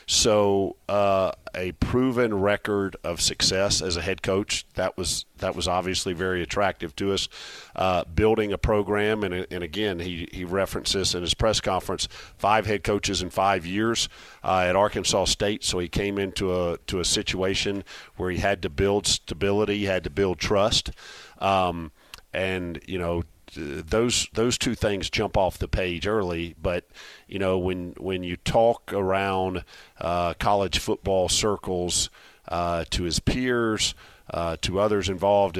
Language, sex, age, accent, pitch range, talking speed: English, male, 50-69, American, 90-100 Hz, 165 wpm